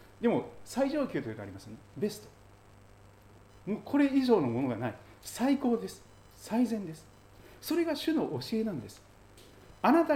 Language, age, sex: Japanese, 40-59, male